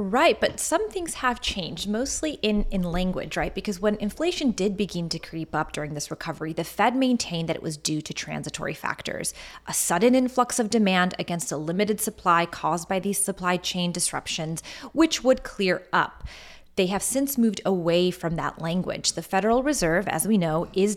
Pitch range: 165-210 Hz